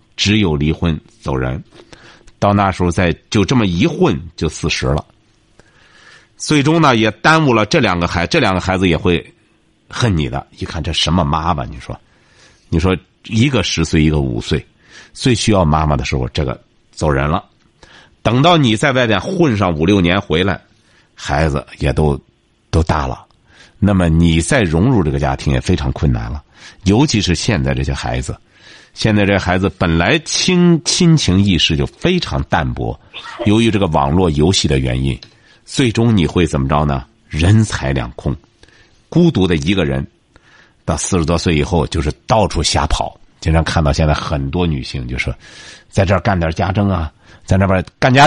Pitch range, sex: 80-110 Hz, male